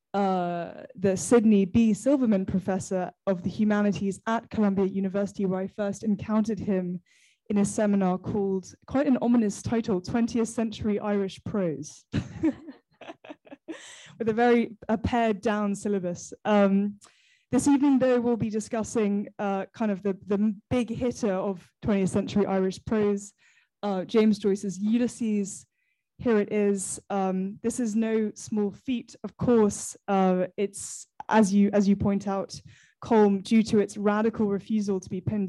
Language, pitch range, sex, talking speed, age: English, 195-230 Hz, female, 145 wpm, 10-29